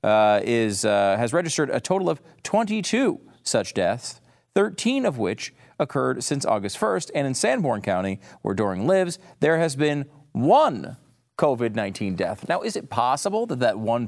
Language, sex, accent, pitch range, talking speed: English, male, American, 115-165 Hz, 160 wpm